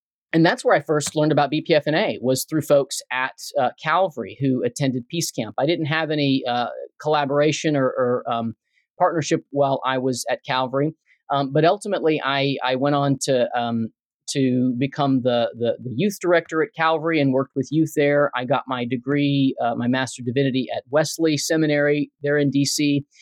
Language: English